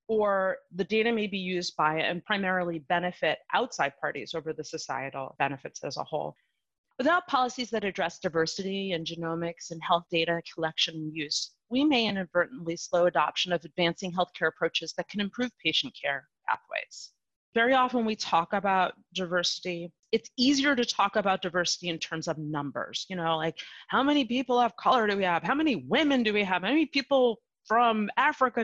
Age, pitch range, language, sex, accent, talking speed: 30-49, 170-230 Hz, English, female, American, 180 wpm